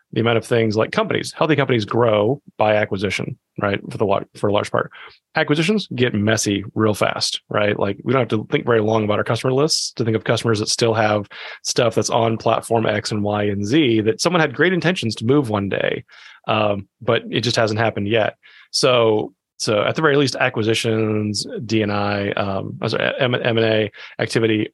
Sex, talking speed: male, 200 wpm